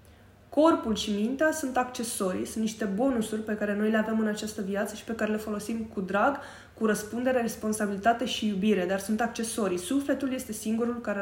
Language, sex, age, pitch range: Romanian, female, 20-39, 185-245 Hz